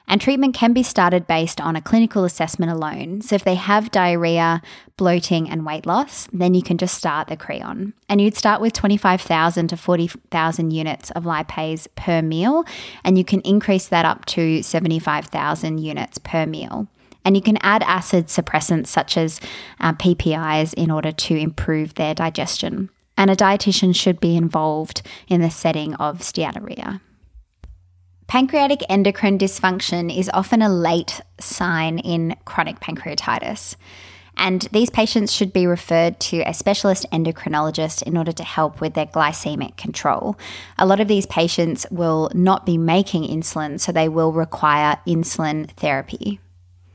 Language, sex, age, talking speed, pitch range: English, female, 20-39, 155 wpm, 160-195 Hz